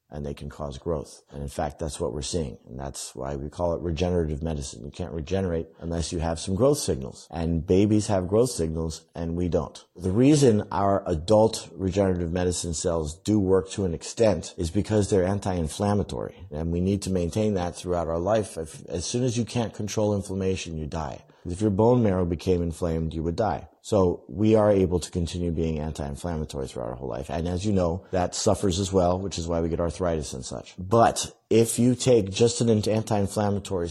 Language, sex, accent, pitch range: English, male, American, 80-105 Hz